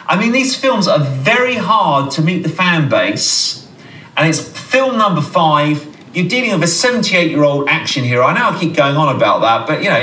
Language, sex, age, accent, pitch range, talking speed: English, male, 30-49, British, 145-195 Hz, 210 wpm